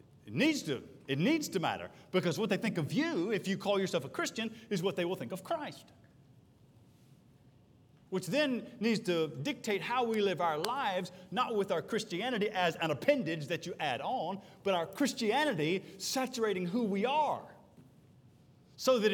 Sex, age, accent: male, 40-59, American